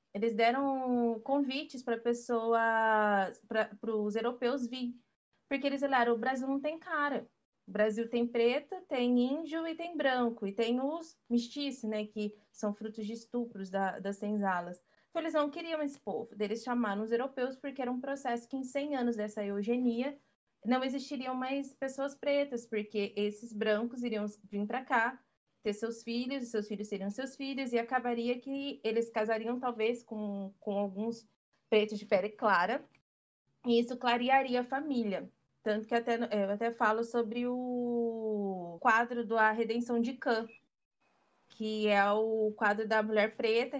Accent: Brazilian